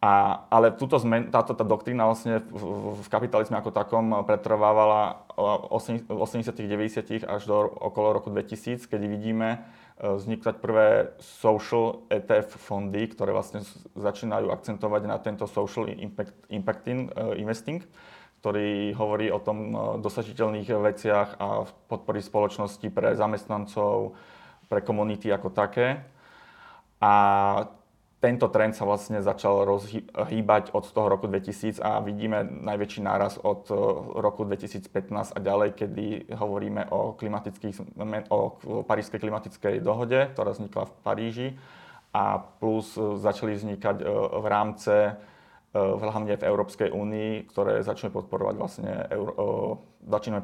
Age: 30-49